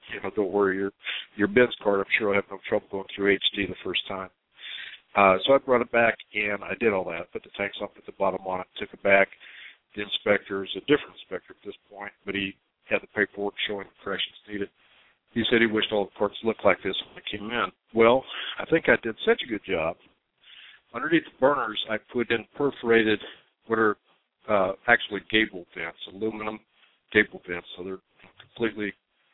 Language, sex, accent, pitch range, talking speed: English, male, American, 100-115 Hz, 210 wpm